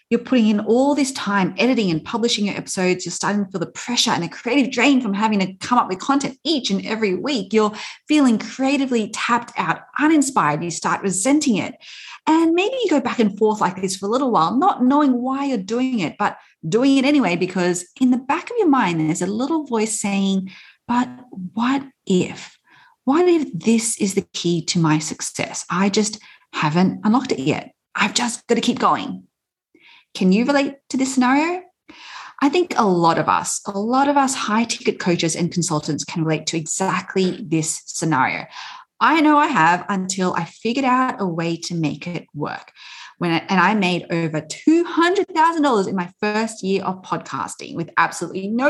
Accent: Australian